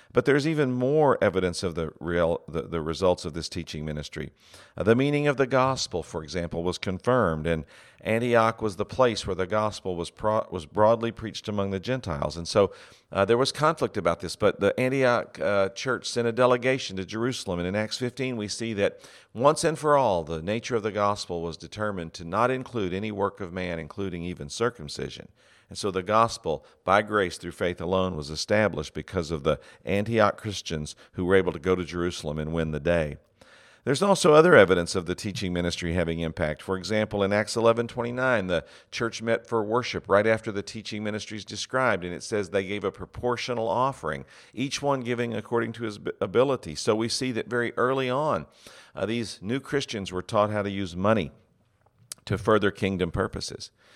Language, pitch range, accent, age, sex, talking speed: English, 90-120 Hz, American, 50-69, male, 195 wpm